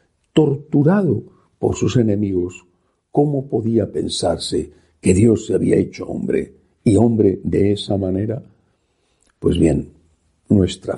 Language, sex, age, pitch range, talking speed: Spanish, male, 60-79, 95-140 Hz, 115 wpm